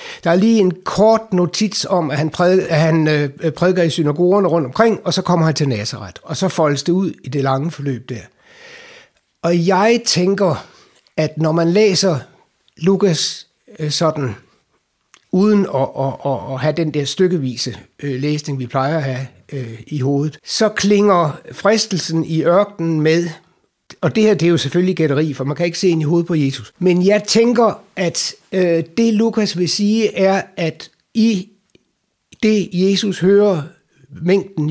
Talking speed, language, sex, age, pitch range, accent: 165 wpm, Danish, male, 60-79, 150-195 Hz, native